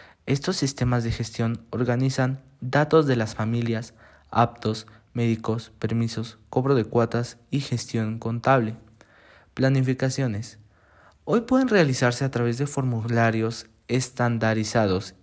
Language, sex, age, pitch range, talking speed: Spanish, male, 20-39, 110-135 Hz, 105 wpm